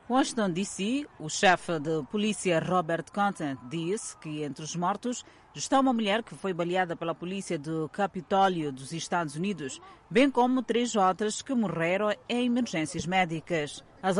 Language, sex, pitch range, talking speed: Portuguese, female, 165-210 Hz, 150 wpm